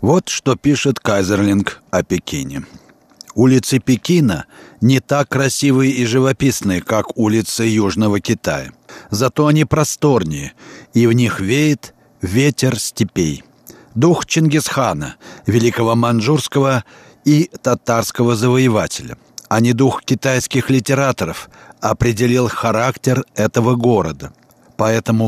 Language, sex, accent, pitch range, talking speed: Russian, male, native, 110-135 Hz, 100 wpm